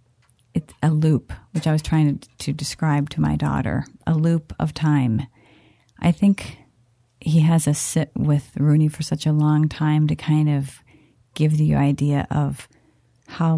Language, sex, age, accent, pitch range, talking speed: English, female, 40-59, American, 120-155 Hz, 170 wpm